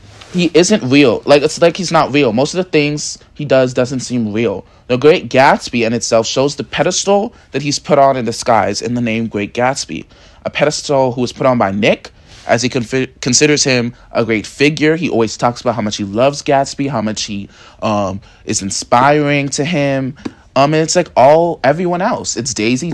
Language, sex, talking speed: English, male, 205 wpm